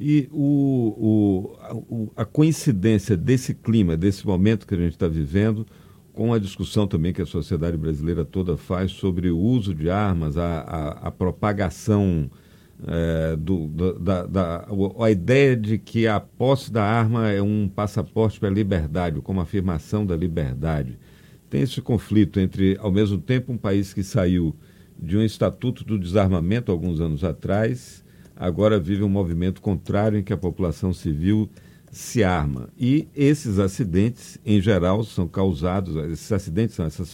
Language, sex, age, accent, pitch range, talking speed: Portuguese, male, 50-69, Brazilian, 90-110 Hz, 145 wpm